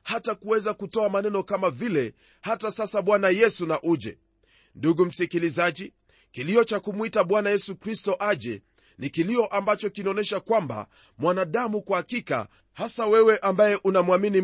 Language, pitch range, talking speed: Swahili, 160-220 Hz, 135 wpm